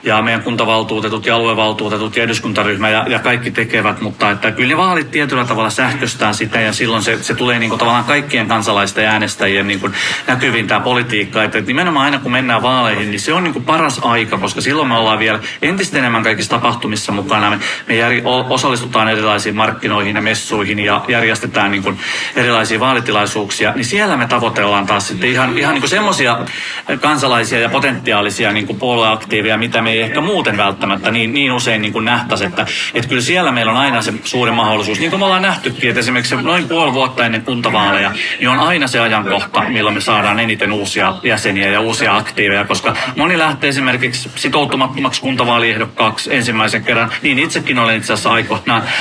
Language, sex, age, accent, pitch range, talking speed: Finnish, male, 30-49, native, 110-125 Hz, 180 wpm